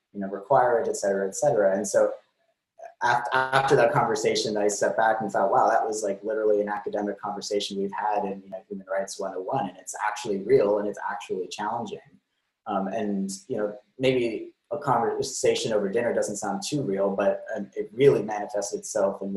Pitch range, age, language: 95-125 Hz, 20-39, English